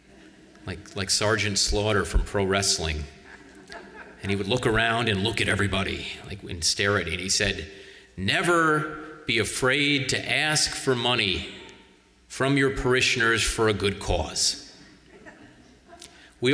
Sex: male